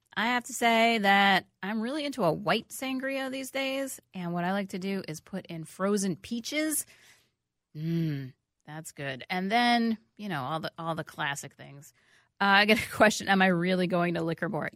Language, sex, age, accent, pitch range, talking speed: English, female, 30-49, American, 170-230 Hz, 200 wpm